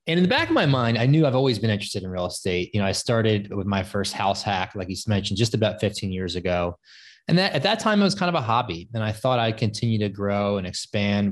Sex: male